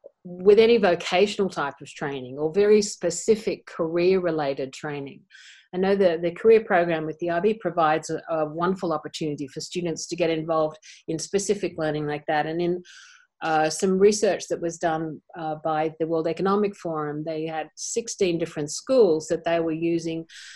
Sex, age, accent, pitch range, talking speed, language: female, 50-69, Australian, 160-200 Hz, 170 wpm, English